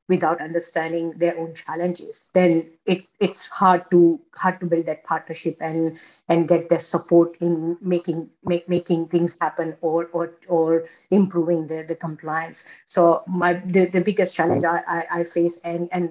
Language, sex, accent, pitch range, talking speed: English, female, Indian, 165-180 Hz, 165 wpm